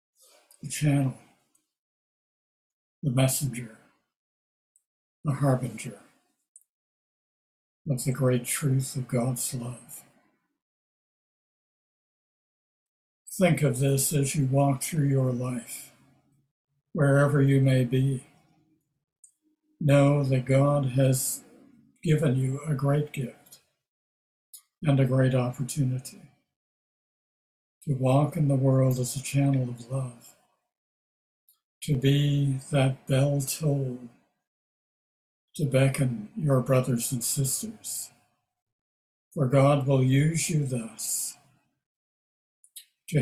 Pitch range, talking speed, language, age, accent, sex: 130-145 Hz, 95 wpm, English, 60-79, American, male